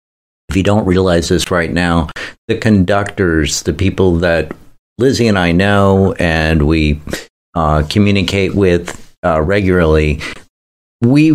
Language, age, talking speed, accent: English, 50-69, 120 wpm, American